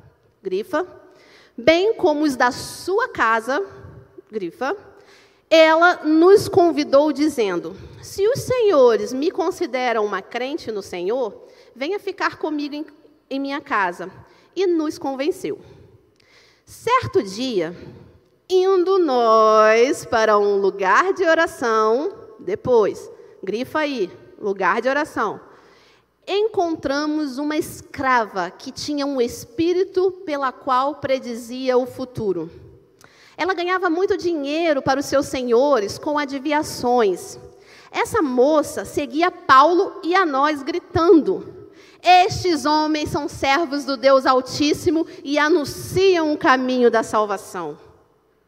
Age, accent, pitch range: 40-59, Brazilian, 260-375 Hz